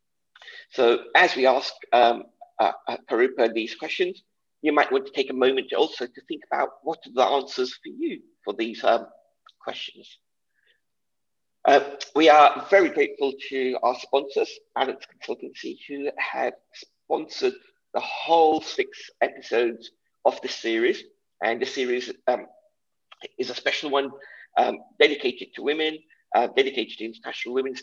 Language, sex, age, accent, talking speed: English, male, 50-69, British, 145 wpm